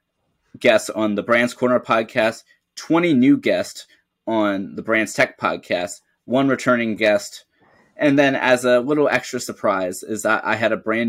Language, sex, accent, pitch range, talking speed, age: English, male, American, 100-125 Hz, 160 wpm, 20-39